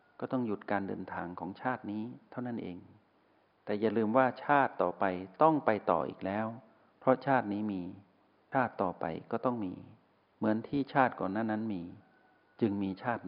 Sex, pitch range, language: male, 100-125 Hz, Thai